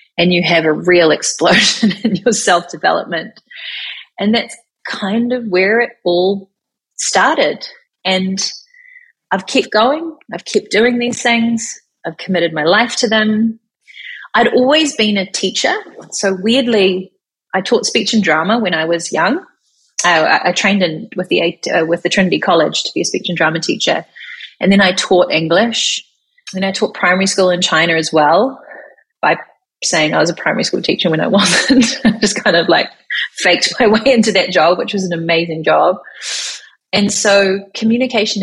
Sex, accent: female, Australian